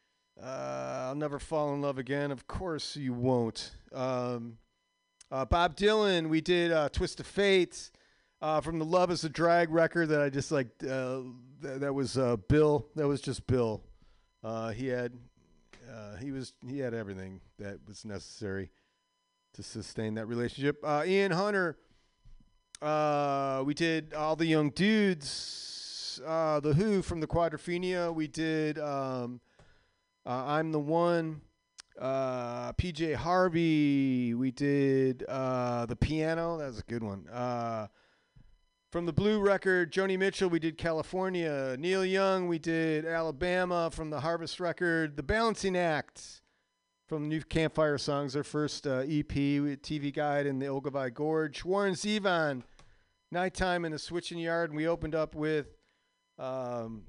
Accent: American